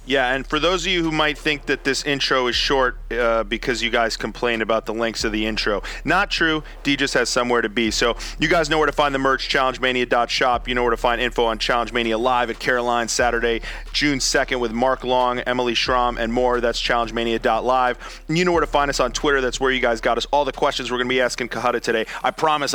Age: 30-49